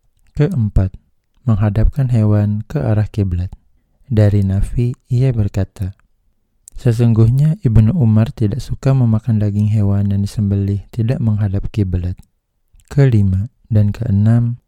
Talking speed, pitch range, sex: 105 wpm, 100-115 Hz, male